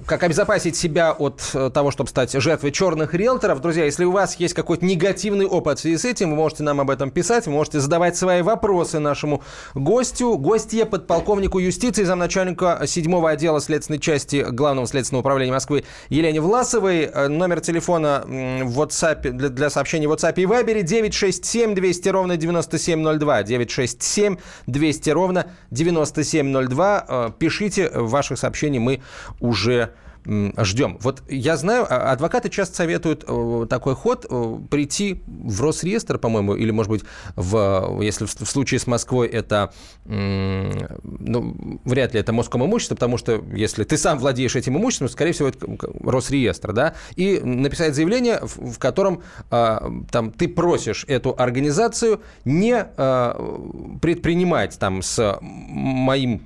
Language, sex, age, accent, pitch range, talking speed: Russian, male, 30-49, native, 125-180 Hz, 140 wpm